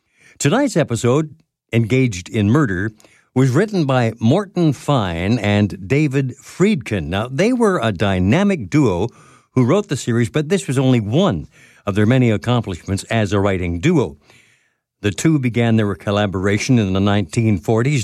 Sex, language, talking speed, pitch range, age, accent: male, English, 145 wpm, 105-140 Hz, 60-79, American